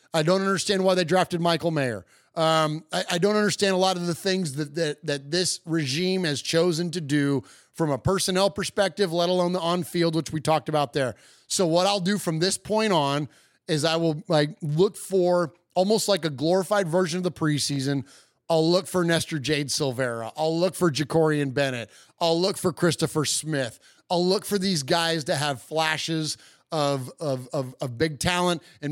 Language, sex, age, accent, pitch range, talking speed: English, male, 30-49, American, 145-180 Hz, 195 wpm